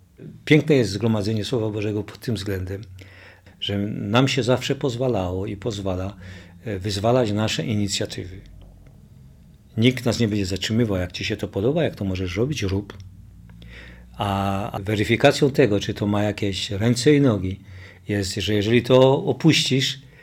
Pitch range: 95-120 Hz